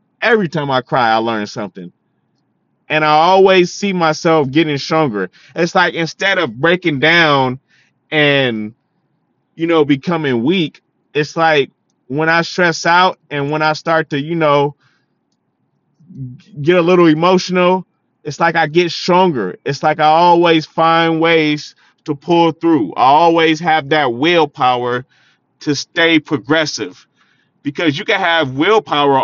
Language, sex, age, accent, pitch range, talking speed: English, male, 30-49, American, 145-175 Hz, 140 wpm